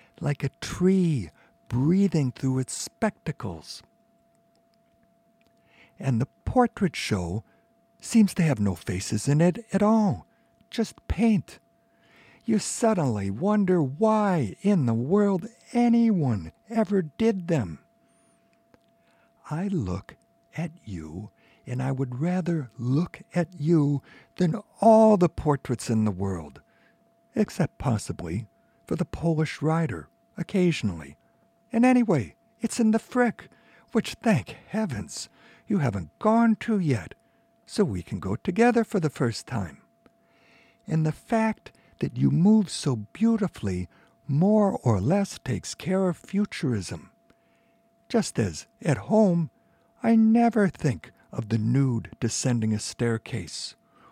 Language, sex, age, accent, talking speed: English, male, 60-79, American, 120 wpm